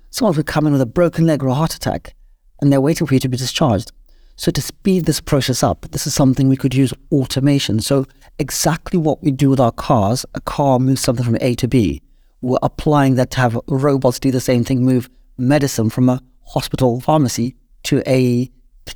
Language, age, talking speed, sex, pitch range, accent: English, 40-59, 215 wpm, male, 130-155 Hz, British